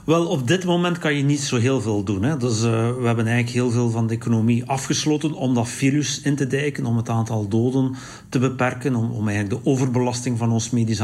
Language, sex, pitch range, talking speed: Dutch, male, 115-140 Hz, 235 wpm